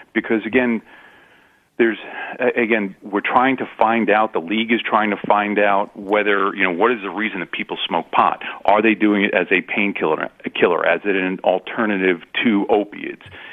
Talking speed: 180 wpm